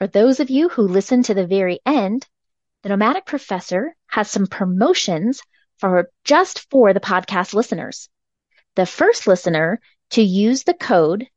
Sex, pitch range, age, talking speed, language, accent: female, 185-265 Hz, 30-49, 155 wpm, English, American